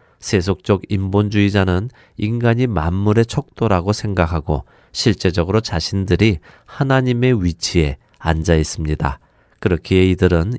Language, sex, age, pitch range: Korean, male, 40-59, 85-110 Hz